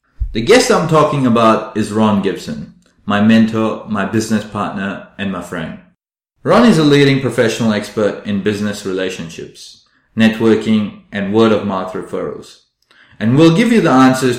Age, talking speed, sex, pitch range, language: 30-49, 150 wpm, male, 105-125 Hz, English